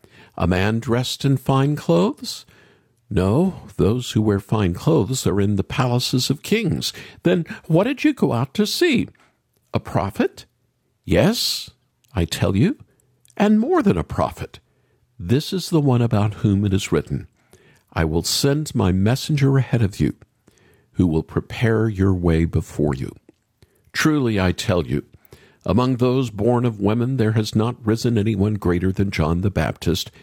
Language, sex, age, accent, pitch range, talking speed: English, male, 50-69, American, 105-155 Hz, 160 wpm